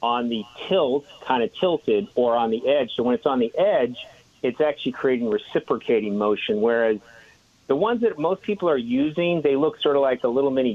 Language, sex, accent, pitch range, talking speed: English, male, American, 110-150 Hz, 205 wpm